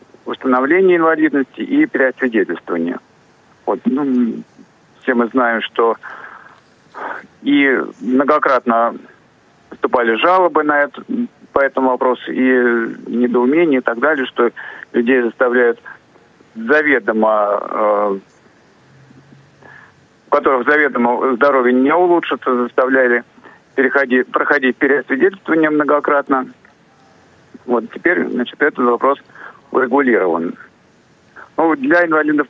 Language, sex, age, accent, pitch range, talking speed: Russian, male, 50-69, native, 115-140 Hz, 90 wpm